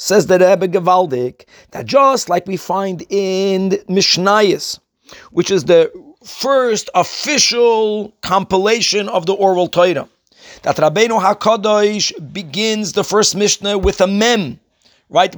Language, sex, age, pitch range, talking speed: English, male, 50-69, 180-225 Hz, 125 wpm